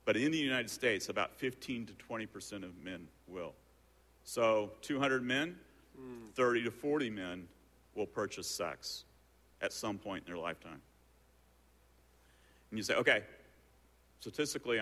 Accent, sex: American, male